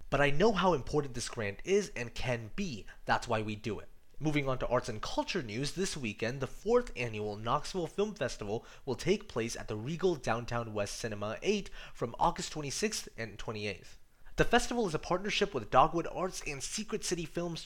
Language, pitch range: English, 120-190 Hz